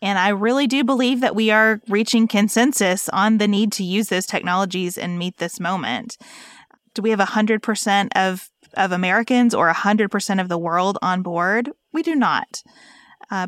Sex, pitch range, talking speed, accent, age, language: female, 185-240 Hz, 185 wpm, American, 20-39, English